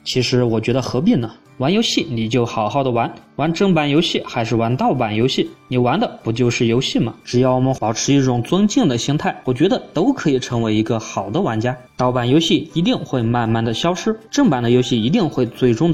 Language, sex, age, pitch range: Chinese, male, 20-39, 115-150 Hz